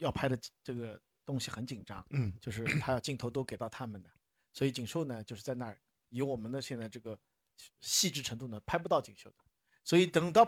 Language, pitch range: Chinese, 120-160 Hz